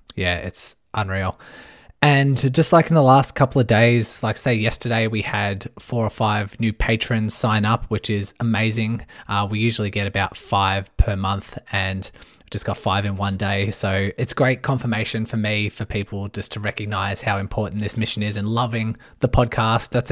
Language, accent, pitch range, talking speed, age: English, Australian, 100-115 Hz, 190 wpm, 20-39